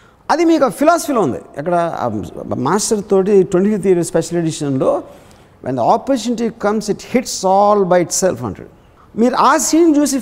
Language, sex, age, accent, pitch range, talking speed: Telugu, male, 60-79, native, 155-205 Hz, 145 wpm